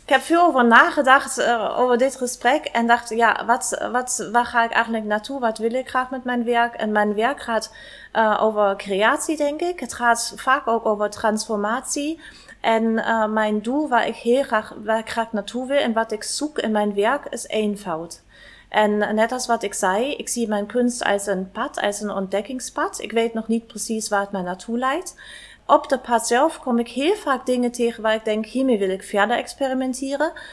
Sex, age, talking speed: female, 30-49, 210 wpm